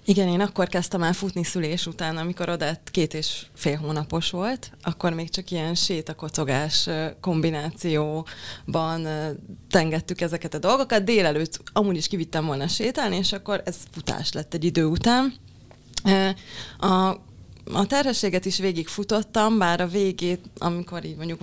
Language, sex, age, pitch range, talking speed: Hungarian, female, 20-39, 155-185 Hz, 140 wpm